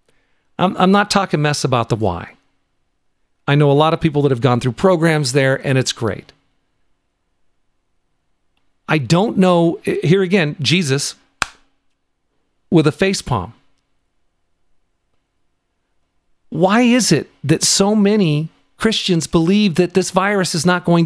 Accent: American